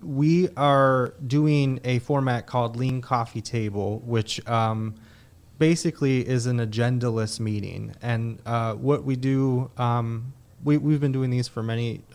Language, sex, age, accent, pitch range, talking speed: English, male, 30-49, American, 110-125 Hz, 140 wpm